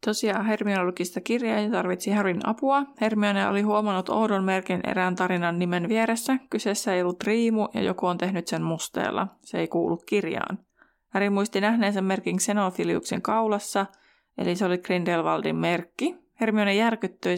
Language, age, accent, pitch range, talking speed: Finnish, 20-39, native, 175-210 Hz, 150 wpm